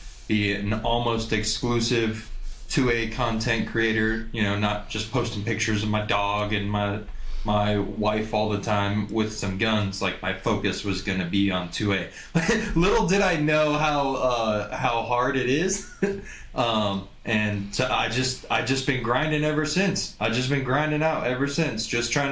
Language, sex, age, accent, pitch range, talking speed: English, male, 20-39, American, 105-130 Hz, 175 wpm